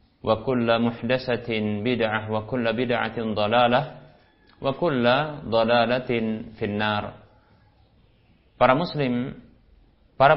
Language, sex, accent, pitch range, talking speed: Indonesian, male, native, 110-125 Hz, 80 wpm